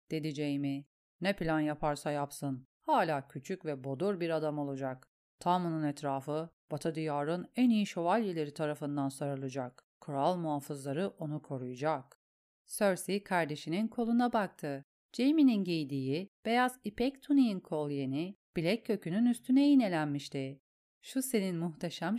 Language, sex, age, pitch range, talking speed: Turkish, female, 40-59, 150-210 Hz, 120 wpm